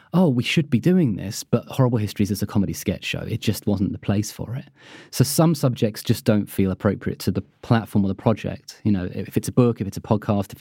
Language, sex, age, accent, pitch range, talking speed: English, male, 30-49, British, 105-140 Hz, 255 wpm